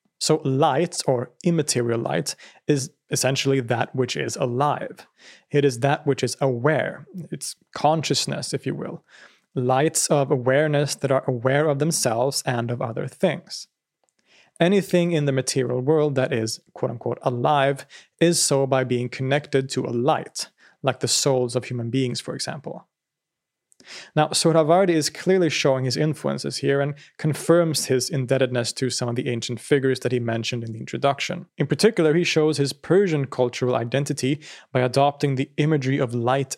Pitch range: 125-150 Hz